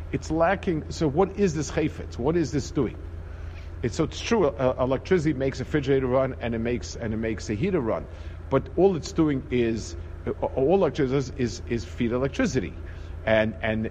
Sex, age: male, 50-69